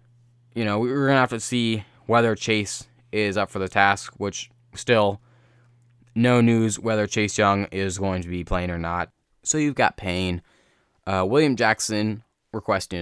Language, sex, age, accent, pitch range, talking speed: English, male, 10-29, American, 95-120 Hz, 170 wpm